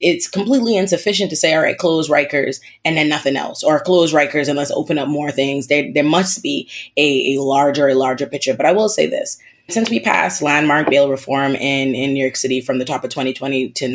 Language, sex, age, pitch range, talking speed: English, female, 20-39, 135-160 Hz, 230 wpm